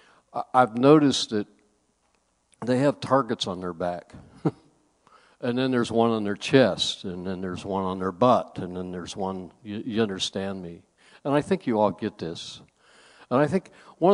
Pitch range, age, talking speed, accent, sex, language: 100-130 Hz, 60-79, 180 wpm, American, male, English